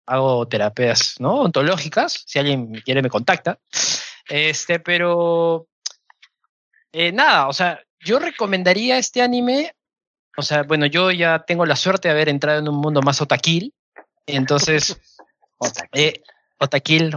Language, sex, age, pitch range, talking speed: Spanish, male, 20-39, 135-185 Hz, 130 wpm